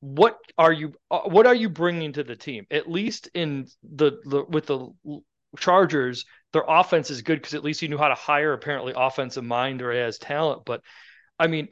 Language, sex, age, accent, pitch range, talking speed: English, male, 40-59, American, 125-165 Hz, 200 wpm